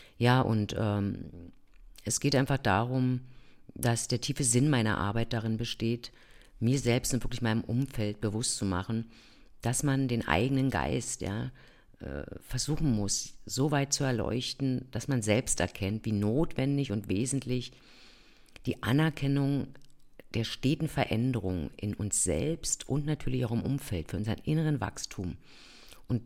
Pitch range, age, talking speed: 110-135 Hz, 50-69, 145 wpm